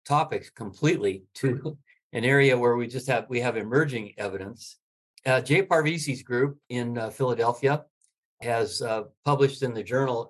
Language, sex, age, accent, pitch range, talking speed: English, male, 50-69, American, 105-145 Hz, 150 wpm